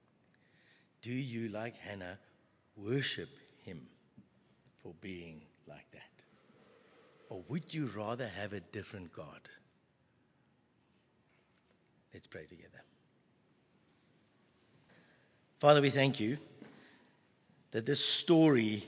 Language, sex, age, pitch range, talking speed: English, male, 60-79, 105-140 Hz, 90 wpm